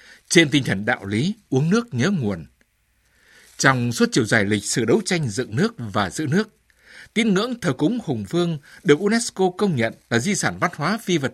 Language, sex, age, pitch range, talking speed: Vietnamese, male, 60-79, 125-190 Hz, 205 wpm